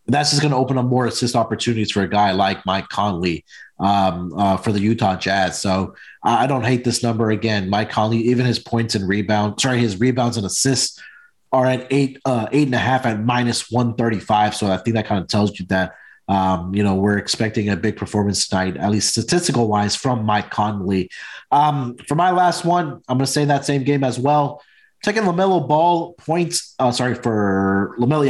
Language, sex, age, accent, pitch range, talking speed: English, male, 30-49, American, 105-140 Hz, 205 wpm